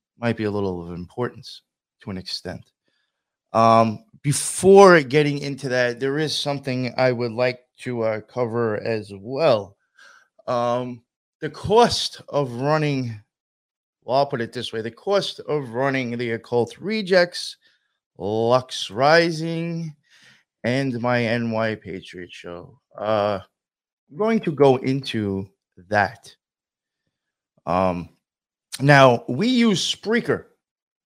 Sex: male